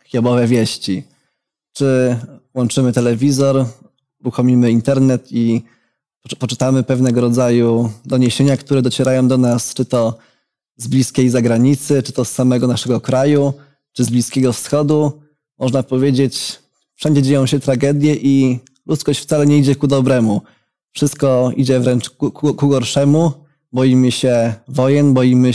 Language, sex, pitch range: Polish, male, 125-140 Hz